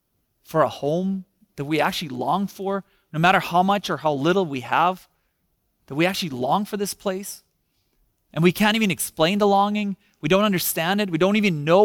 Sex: male